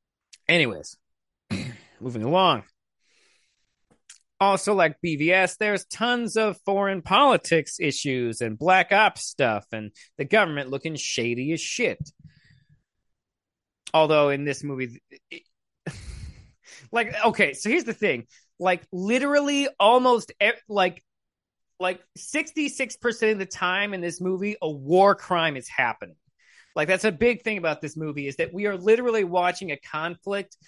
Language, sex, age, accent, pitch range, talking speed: English, male, 30-49, American, 140-200 Hz, 130 wpm